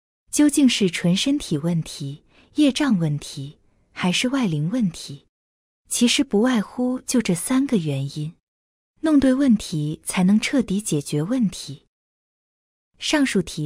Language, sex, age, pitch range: Chinese, female, 20-39, 160-245 Hz